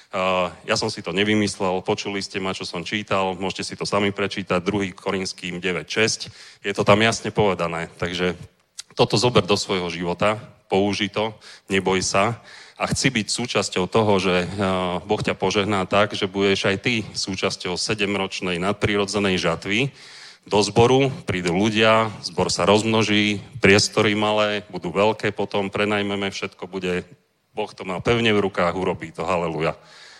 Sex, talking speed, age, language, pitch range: male, 150 wpm, 30-49, Czech, 95-110 Hz